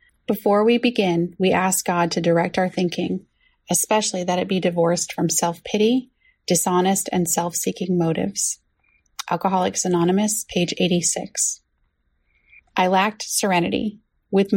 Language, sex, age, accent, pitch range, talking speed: English, female, 30-49, American, 170-205 Hz, 120 wpm